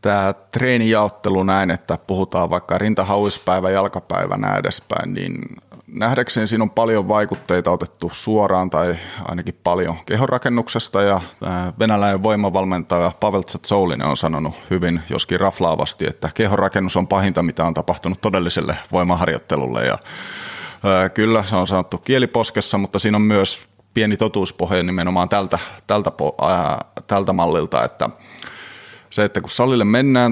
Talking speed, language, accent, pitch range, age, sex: 130 wpm, Finnish, native, 90-110 Hz, 30-49, male